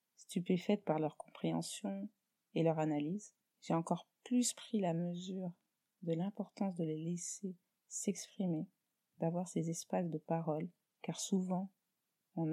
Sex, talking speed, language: female, 130 wpm, French